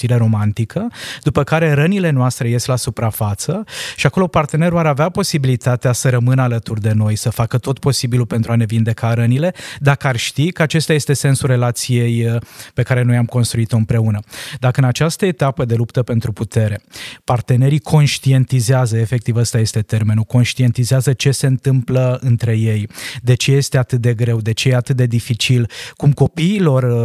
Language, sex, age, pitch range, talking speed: Romanian, male, 20-39, 120-140 Hz, 170 wpm